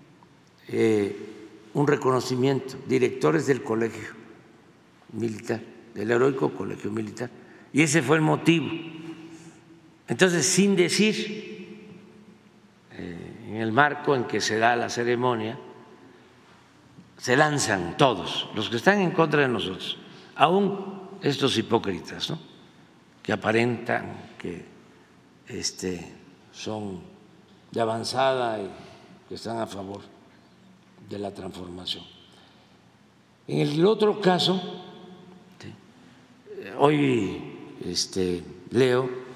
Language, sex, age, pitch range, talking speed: Spanish, male, 60-79, 110-165 Hz, 95 wpm